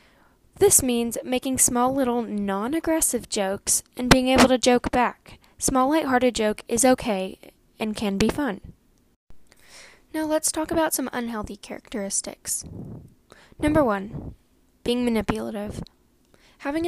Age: 10-29